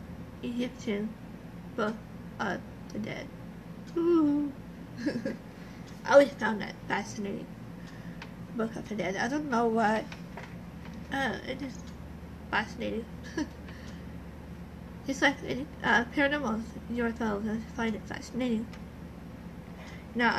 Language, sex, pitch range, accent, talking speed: English, female, 205-250 Hz, American, 90 wpm